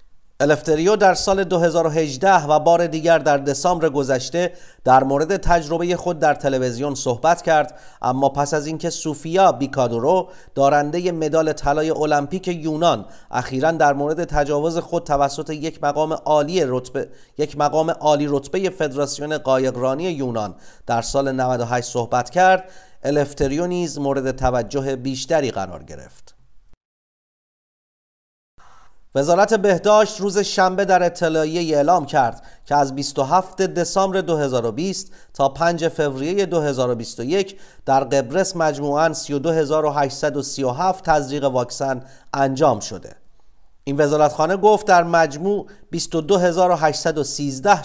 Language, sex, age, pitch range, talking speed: Persian, male, 40-59, 135-170 Hz, 110 wpm